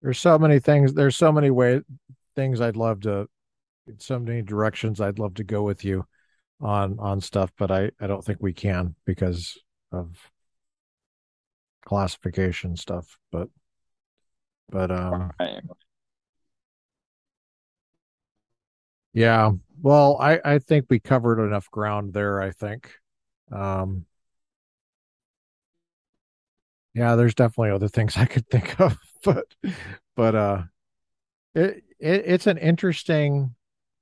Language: English